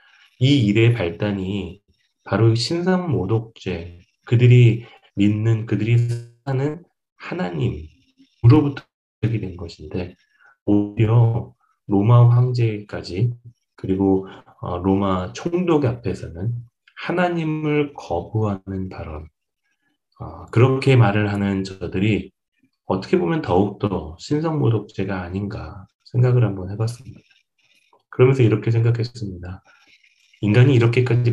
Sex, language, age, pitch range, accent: male, Korean, 30-49, 95-120 Hz, native